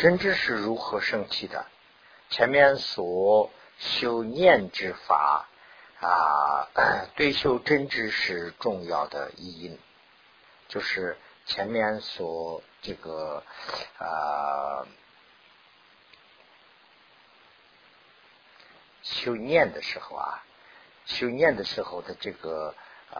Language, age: Chinese, 50-69